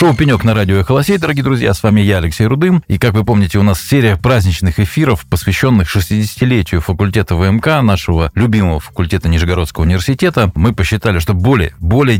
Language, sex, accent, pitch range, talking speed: Russian, male, native, 85-110 Hz, 175 wpm